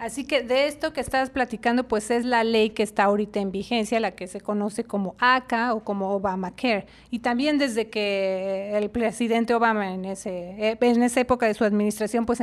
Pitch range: 210-255 Hz